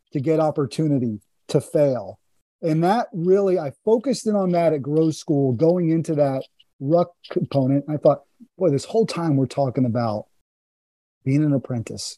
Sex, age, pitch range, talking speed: male, 40-59, 135-170 Hz, 170 wpm